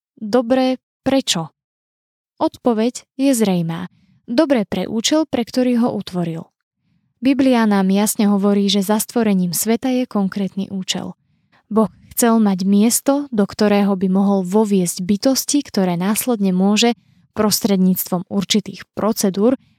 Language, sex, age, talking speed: Slovak, female, 20-39, 120 wpm